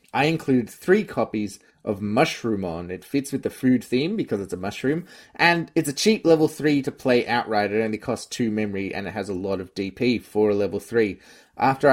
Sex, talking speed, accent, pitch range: male, 210 wpm, Australian, 105-135 Hz